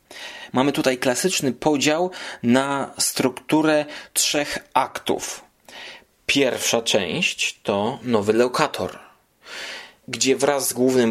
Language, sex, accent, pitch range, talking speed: Polish, male, native, 120-170 Hz, 90 wpm